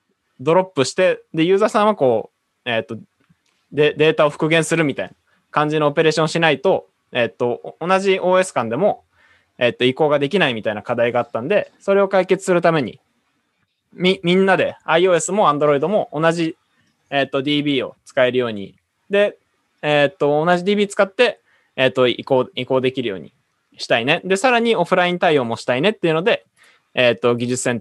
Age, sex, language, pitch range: 20-39, male, Japanese, 125-185 Hz